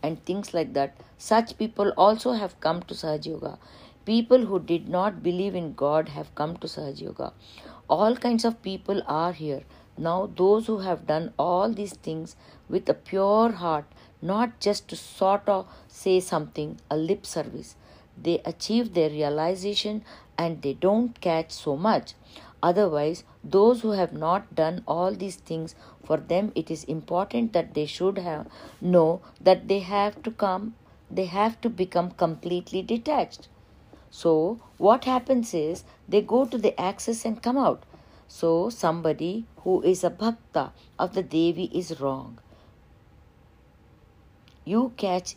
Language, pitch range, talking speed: English, 160-205 Hz, 155 wpm